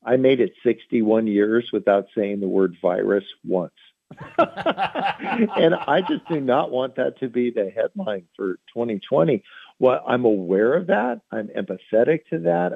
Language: English